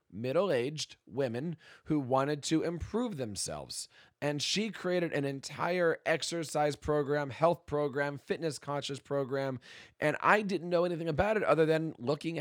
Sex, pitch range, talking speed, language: male, 140-180 Hz, 140 wpm, English